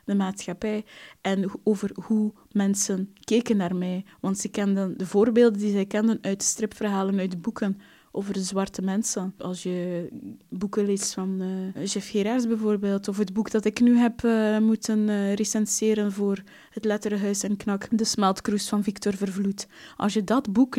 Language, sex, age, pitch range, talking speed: Dutch, female, 20-39, 195-225 Hz, 175 wpm